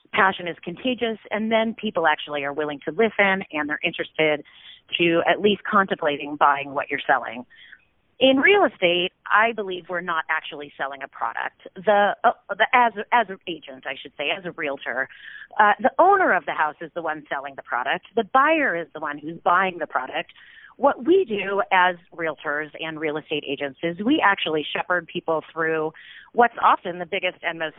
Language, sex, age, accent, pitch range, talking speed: English, female, 30-49, American, 150-210 Hz, 190 wpm